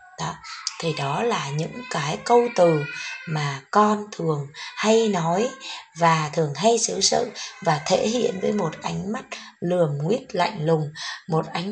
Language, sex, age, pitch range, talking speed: Vietnamese, female, 20-39, 155-225 Hz, 160 wpm